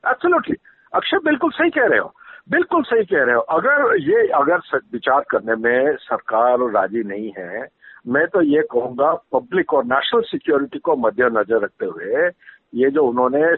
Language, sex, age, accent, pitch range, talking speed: Hindi, male, 50-69, native, 205-345 Hz, 170 wpm